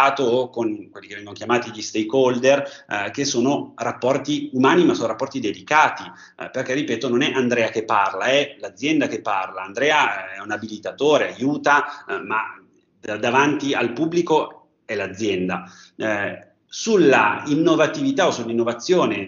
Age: 30-49